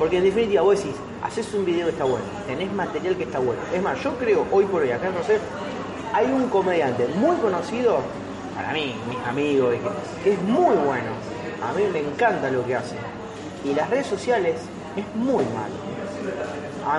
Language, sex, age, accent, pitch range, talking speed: Spanish, male, 30-49, Argentinian, 160-240 Hz, 190 wpm